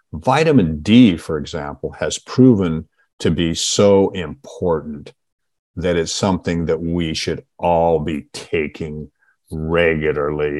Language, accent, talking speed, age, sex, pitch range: English, American, 115 wpm, 50-69, male, 80-105 Hz